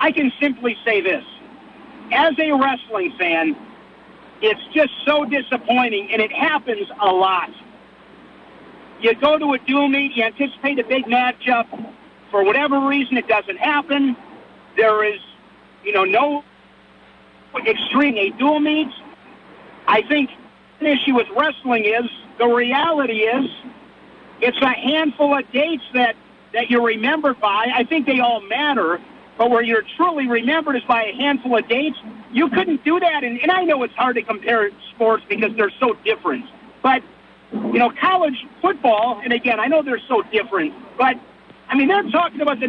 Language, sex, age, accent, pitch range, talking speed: English, male, 50-69, American, 235-295 Hz, 160 wpm